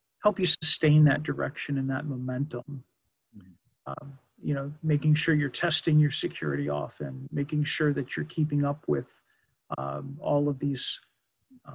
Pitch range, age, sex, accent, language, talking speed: 140-165 Hz, 50-69, male, American, English, 155 wpm